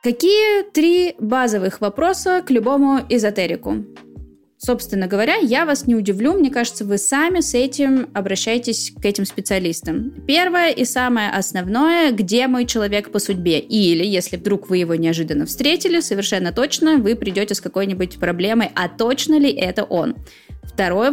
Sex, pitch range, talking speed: female, 185-260 Hz, 150 wpm